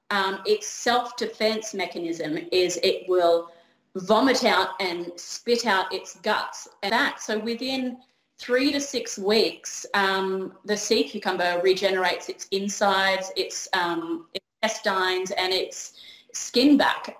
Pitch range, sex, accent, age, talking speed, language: 190-235 Hz, female, Australian, 30-49, 120 wpm, English